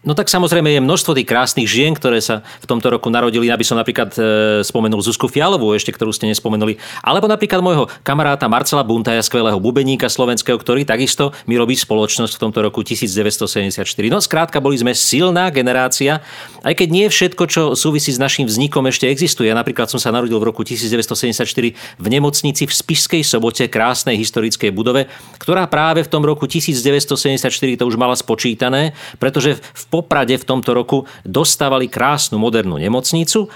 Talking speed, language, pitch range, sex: 170 wpm, Slovak, 115-145 Hz, male